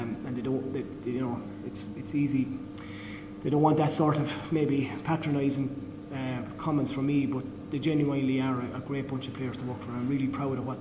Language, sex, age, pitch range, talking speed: English, male, 20-39, 110-145 Hz, 200 wpm